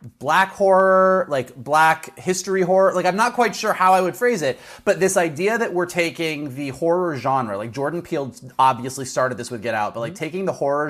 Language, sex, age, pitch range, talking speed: English, male, 30-49, 120-160 Hz, 215 wpm